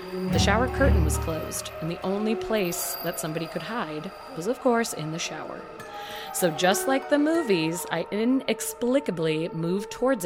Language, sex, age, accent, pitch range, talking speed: English, female, 30-49, American, 170-220 Hz, 165 wpm